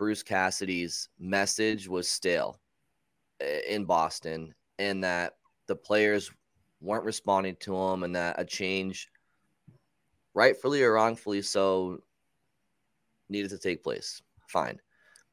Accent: American